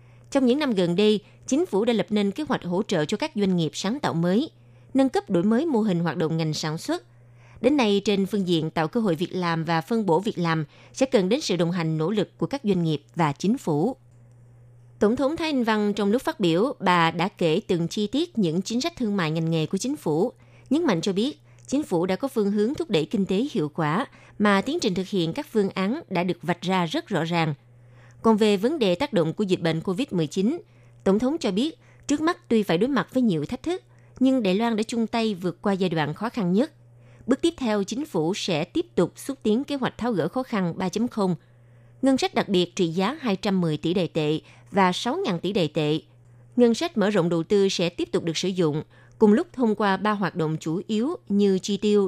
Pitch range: 160-225 Hz